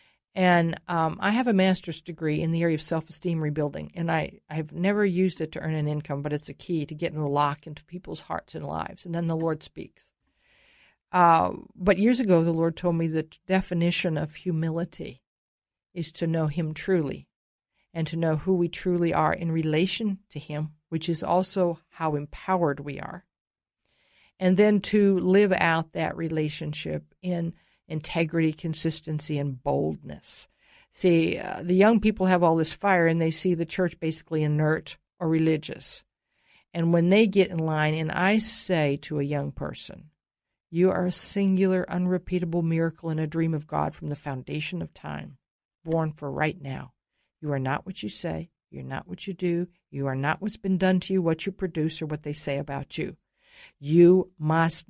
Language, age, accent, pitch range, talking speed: English, 50-69, American, 155-180 Hz, 185 wpm